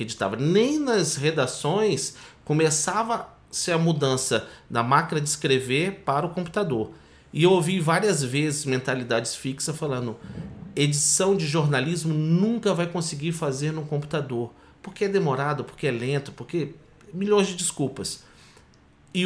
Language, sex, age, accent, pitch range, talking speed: Portuguese, male, 40-59, Brazilian, 140-185 Hz, 130 wpm